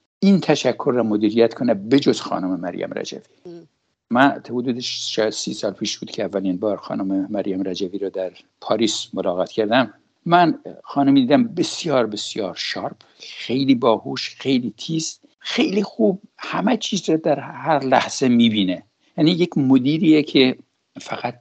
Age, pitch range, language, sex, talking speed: 60-79, 115-175 Hz, English, male, 145 wpm